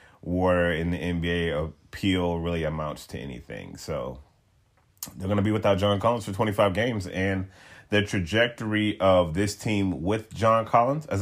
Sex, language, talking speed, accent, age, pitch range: male, English, 160 wpm, American, 30-49, 85-105 Hz